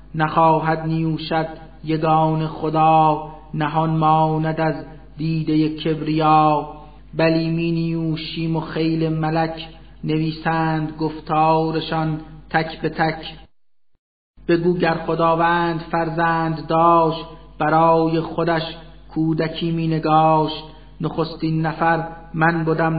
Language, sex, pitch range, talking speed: Persian, male, 155-165 Hz, 90 wpm